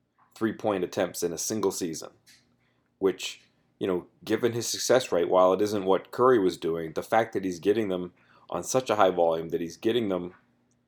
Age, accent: 30-49, American